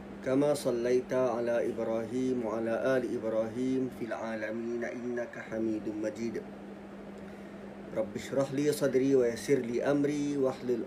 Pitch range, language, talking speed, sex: 120-150 Hz, Malay, 110 wpm, male